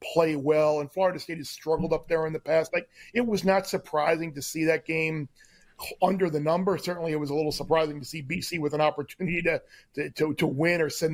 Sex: male